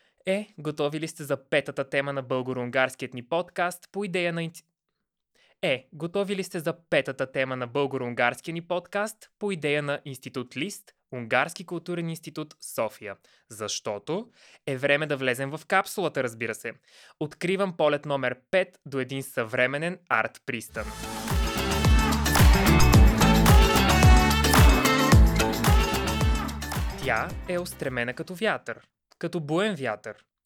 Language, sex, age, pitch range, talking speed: Bulgarian, male, 20-39, 130-165 Hz, 110 wpm